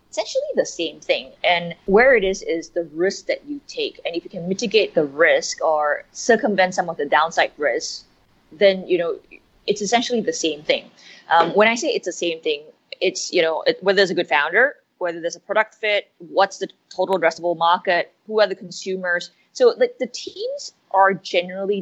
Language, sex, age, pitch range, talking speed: English, female, 20-39, 165-255 Hz, 200 wpm